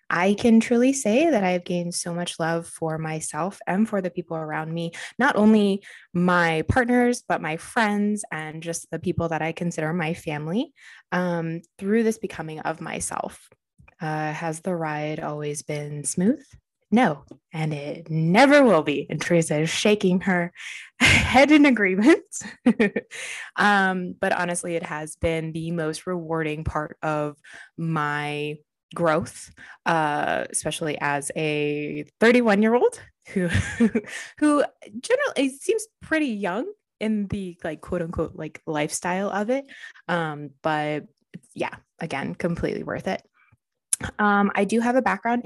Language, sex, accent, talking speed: English, female, American, 145 wpm